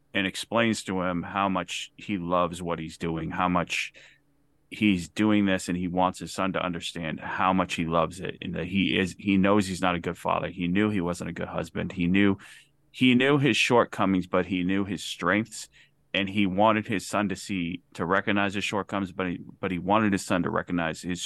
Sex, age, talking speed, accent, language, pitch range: male, 30-49, 220 wpm, American, English, 90-105 Hz